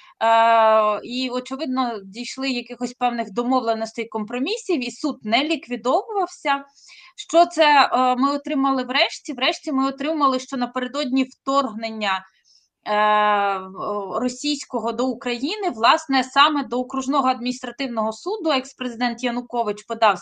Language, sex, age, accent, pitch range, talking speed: Ukrainian, female, 20-39, native, 225-280 Hz, 100 wpm